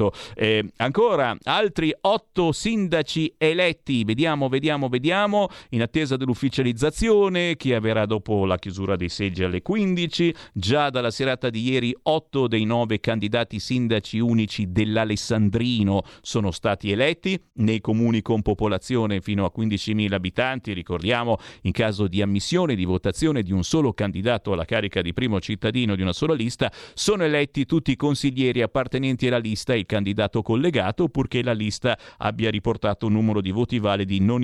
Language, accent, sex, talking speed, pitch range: Italian, native, male, 150 wpm, 105-160 Hz